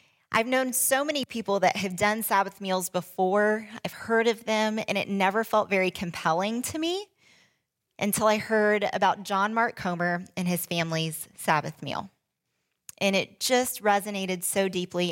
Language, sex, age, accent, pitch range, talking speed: English, female, 30-49, American, 175-220 Hz, 165 wpm